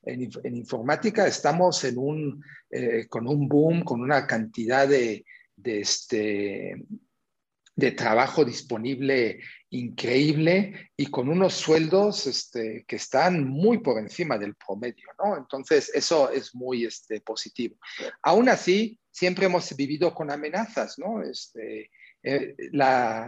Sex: male